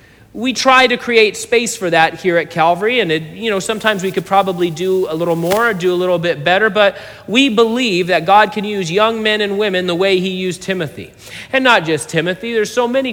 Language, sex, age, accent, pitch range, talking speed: English, male, 40-59, American, 140-195 Hz, 235 wpm